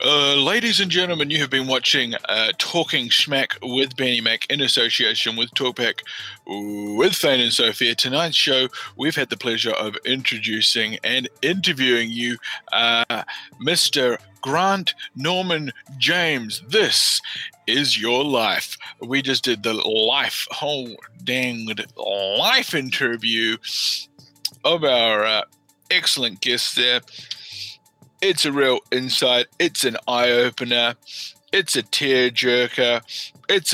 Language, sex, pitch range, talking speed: English, male, 115-135 Hz, 125 wpm